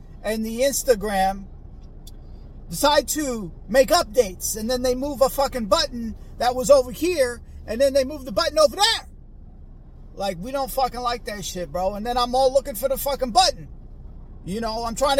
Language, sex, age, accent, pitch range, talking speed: English, male, 40-59, American, 200-295 Hz, 185 wpm